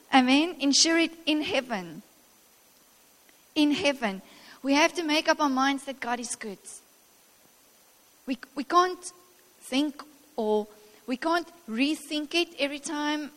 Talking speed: 130 wpm